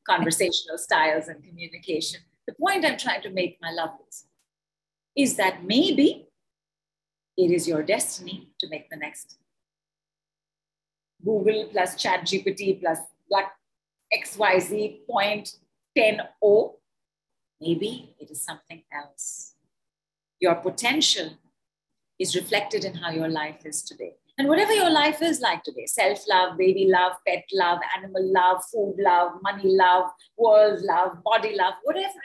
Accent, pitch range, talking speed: Indian, 160-215 Hz, 135 wpm